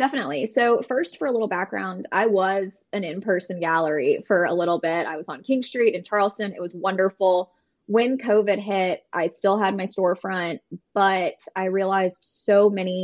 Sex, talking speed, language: female, 180 wpm, English